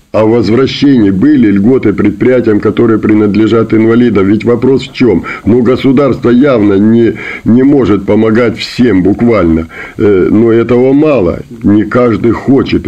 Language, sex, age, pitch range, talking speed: Russian, male, 50-69, 110-130 Hz, 130 wpm